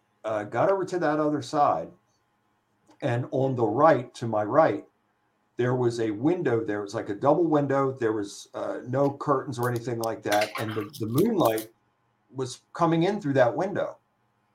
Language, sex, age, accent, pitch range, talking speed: English, male, 50-69, American, 105-155 Hz, 175 wpm